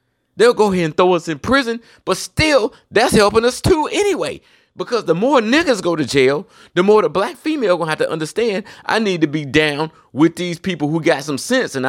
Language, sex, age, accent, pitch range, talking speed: English, male, 30-49, American, 150-205 Hz, 225 wpm